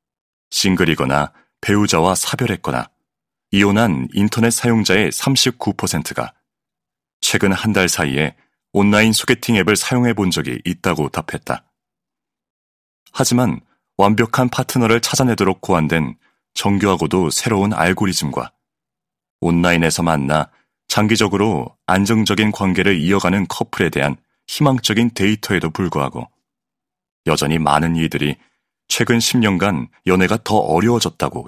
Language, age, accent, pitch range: Korean, 30-49, native, 80-115 Hz